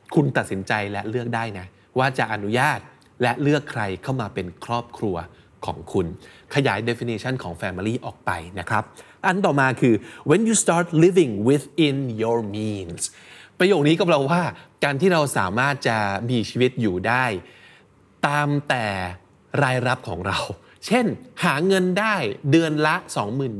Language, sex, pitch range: Thai, male, 110-165 Hz